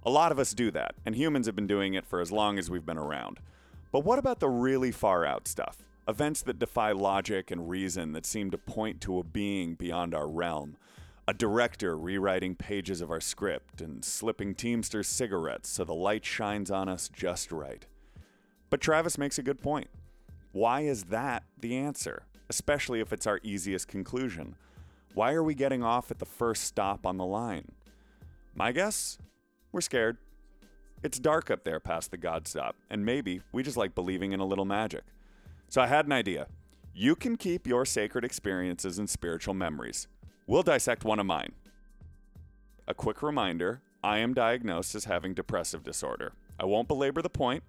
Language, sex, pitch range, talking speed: English, male, 90-125 Hz, 180 wpm